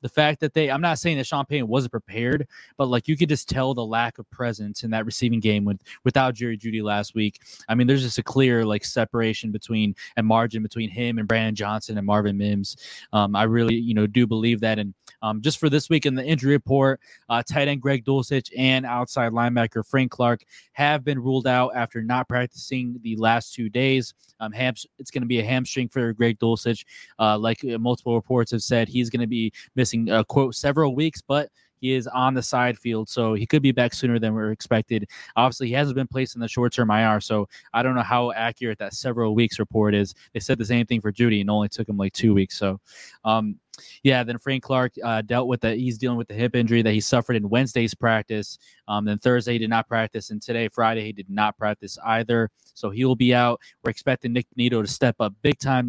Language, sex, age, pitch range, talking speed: English, male, 20-39, 110-130 Hz, 230 wpm